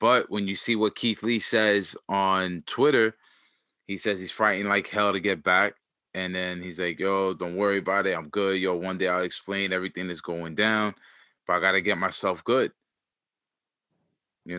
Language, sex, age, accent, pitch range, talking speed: English, male, 20-39, American, 95-115 Hz, 195 wpm